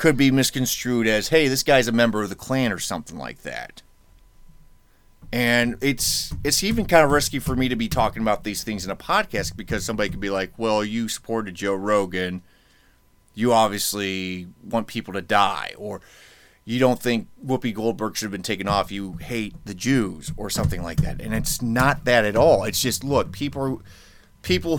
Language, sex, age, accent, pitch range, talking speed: English, male, 30-49, American, 100-130 Hz, 195 wpm